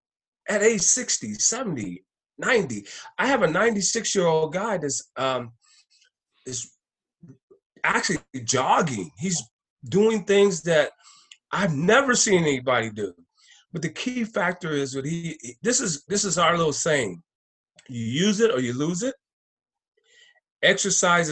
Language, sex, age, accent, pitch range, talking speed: English, male, 40-59, American, 135-215 Hz, 135 wpm